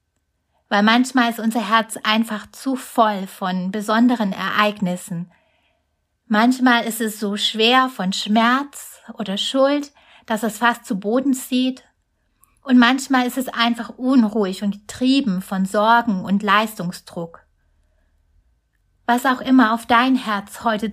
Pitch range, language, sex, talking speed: 200-250 Hz, German, female, 130 wpm